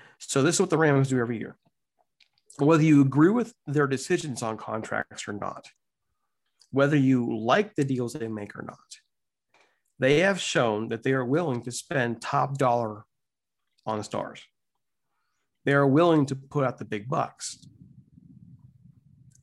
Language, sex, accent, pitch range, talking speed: English, male, American, 125-160 Hz, 160 wpm